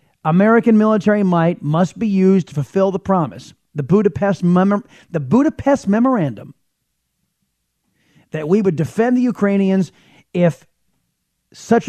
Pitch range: 135-175 Hz